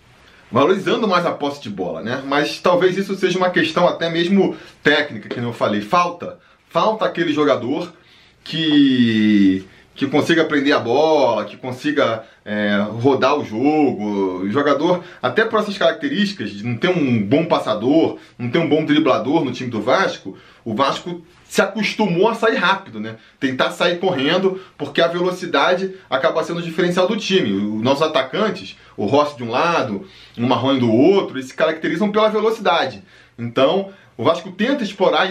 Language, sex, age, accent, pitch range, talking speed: Portuguese, male, 20-39, Brazilian, 125-190 Hz, 165 wpm